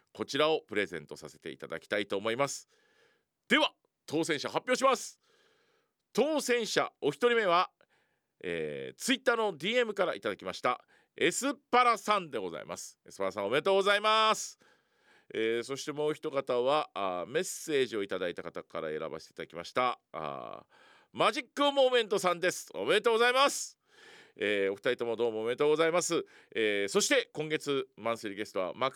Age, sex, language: 40-59, male, Japanese